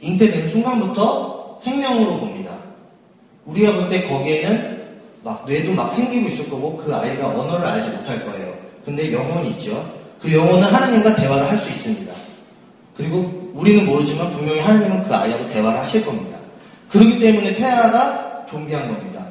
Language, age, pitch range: Korean, 30-49, 180-230 Hz